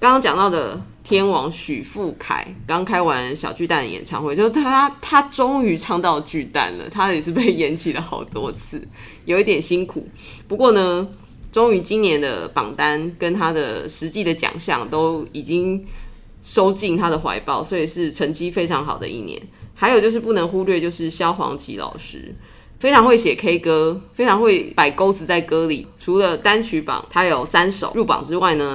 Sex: female